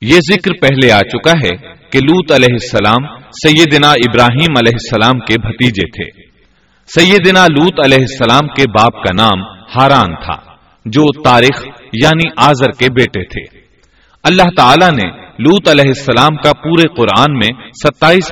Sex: male